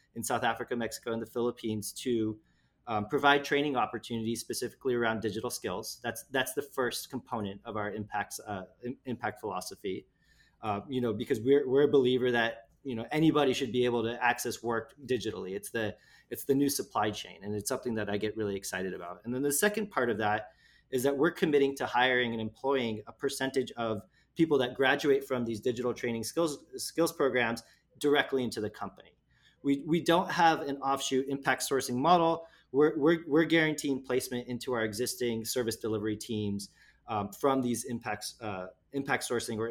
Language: English